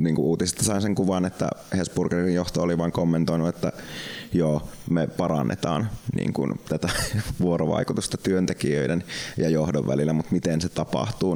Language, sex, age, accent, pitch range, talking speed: Finnish, male, 20-39, native, 75-85 Hz, 145 wpm